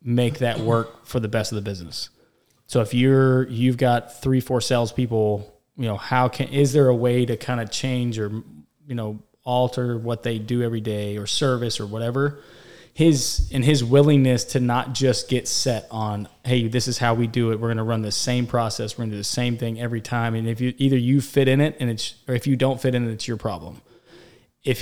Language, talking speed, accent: English, 230 wpm, American